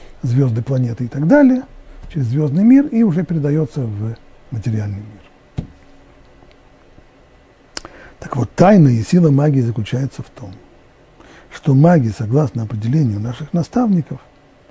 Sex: male